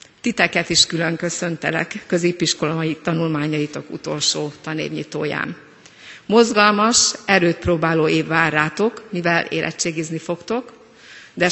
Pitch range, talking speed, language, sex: 165-210 Hz, 95 wpm, Hungarian, female